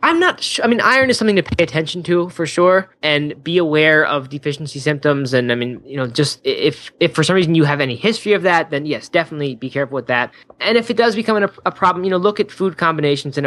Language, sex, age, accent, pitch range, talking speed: English, male, 10-29, American, 135-170 Hz, 260 wpm